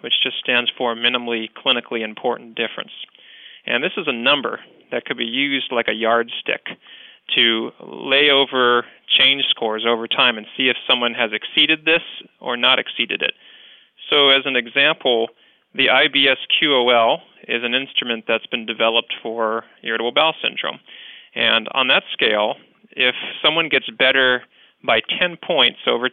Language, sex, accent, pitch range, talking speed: English, male, American, 115-135 Hz, 150 wpm